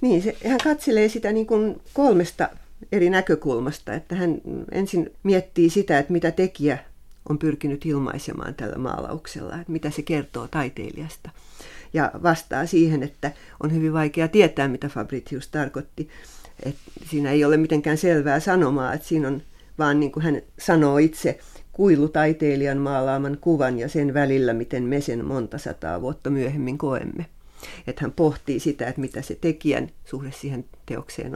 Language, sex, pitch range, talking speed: Finnish, female, 140-165 Hz, 155 wpm